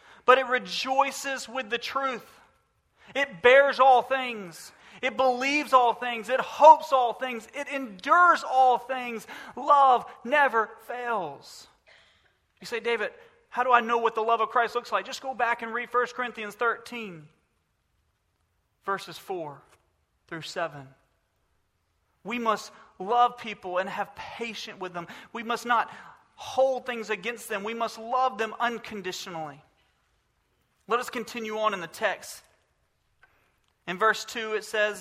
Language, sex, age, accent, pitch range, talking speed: English, male, 40-59, American, 205-255 Hz, 145 wpm